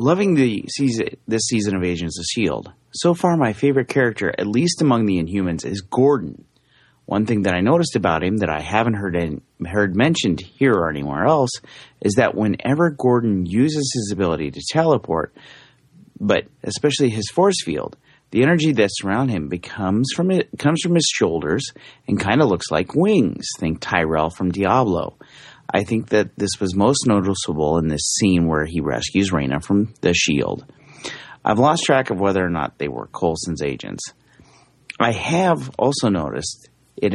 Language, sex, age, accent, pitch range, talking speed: English, male, 30-49, American, 90-135 Hz, 175 wpm